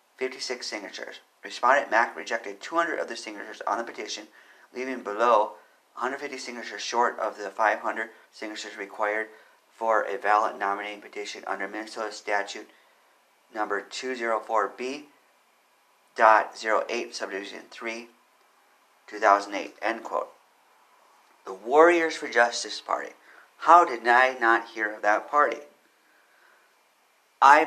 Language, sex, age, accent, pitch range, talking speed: English, male, 40-59, American, 110-150 Hz, 110 wpm